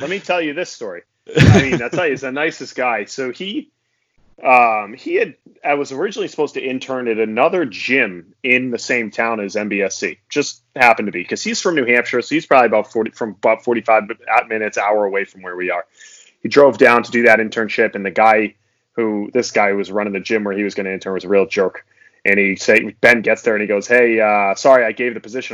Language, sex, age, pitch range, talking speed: English, male, 30-49, 105-135 Hz, 240 wpm